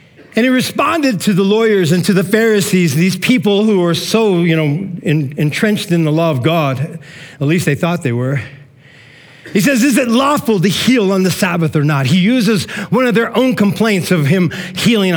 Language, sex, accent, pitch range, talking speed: English, male, American, 150-205 Hz, 205 wpm